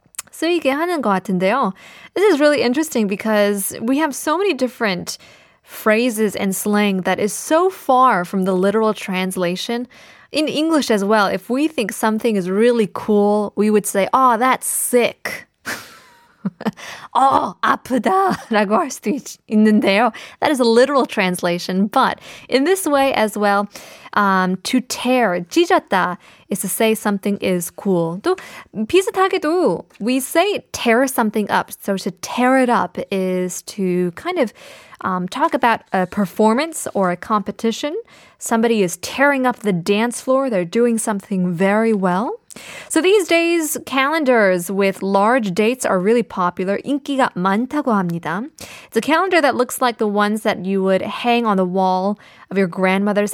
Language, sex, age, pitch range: Korean, female, 20-39, 195-255 Hz